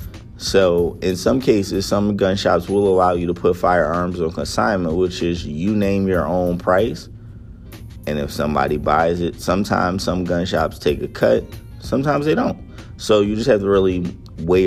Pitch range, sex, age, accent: 85-105 Hz, male, 30-49, American